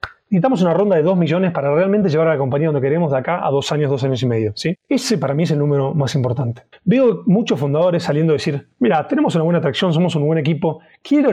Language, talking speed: Spanish, 250 wpm